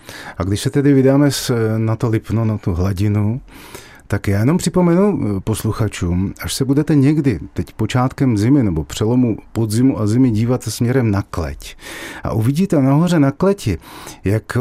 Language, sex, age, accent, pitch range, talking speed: Czech, male, 40-59, native, 110-145 Hz, 160 wpm